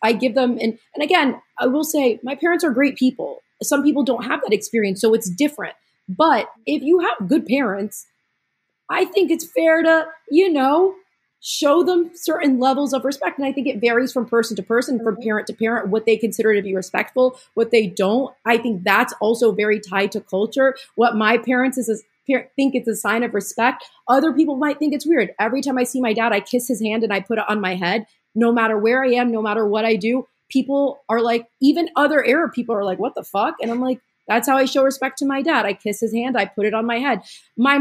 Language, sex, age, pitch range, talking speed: English, female, 30-49, 225-275 Hz, 240 wpm